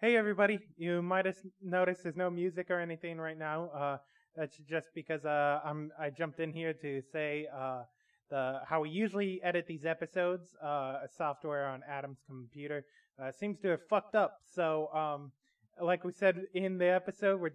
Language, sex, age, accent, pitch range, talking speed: English, male, 20-39, American, 145-185 Hz, 180 wpm